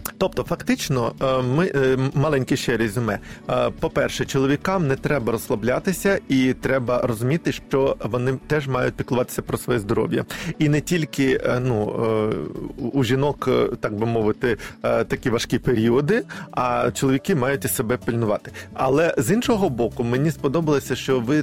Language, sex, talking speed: Ukrainian, male, 130 wpm